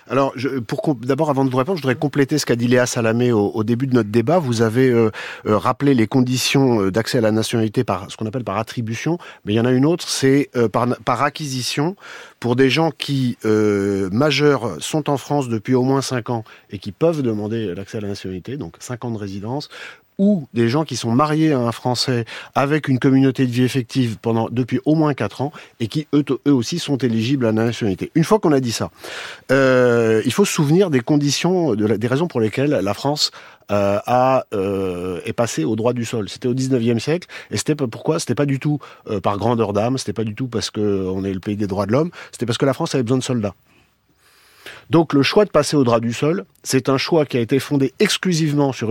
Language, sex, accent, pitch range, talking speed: French, male, French, 115-145 Hz, 235 wpm